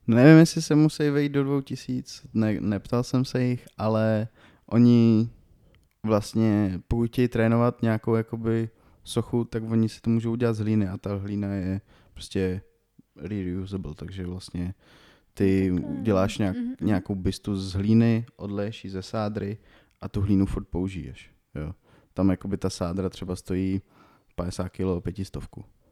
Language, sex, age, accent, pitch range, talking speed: Czech, male, 20-39, native, 95-110 Hz, 145 wpm